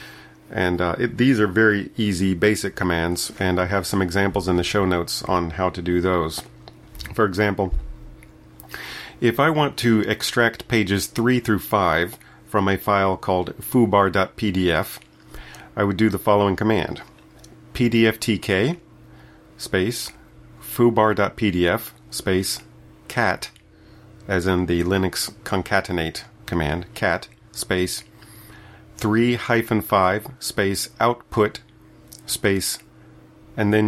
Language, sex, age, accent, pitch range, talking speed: English, male, 40-59, American, 85-110 Hz, 110 wpm